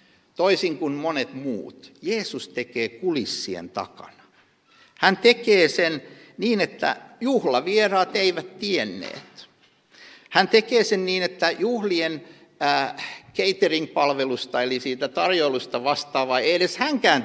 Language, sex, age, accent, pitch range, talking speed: Finnish, male, 60-79, native, 145-235 Hz, 105 wpm